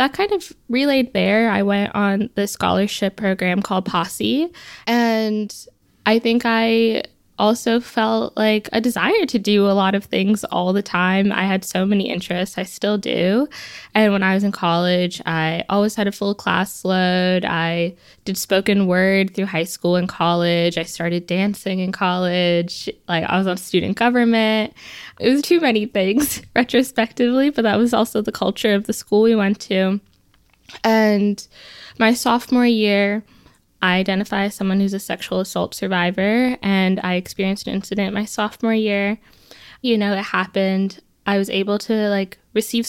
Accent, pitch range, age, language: American, 190-225 Hz, 10-29, English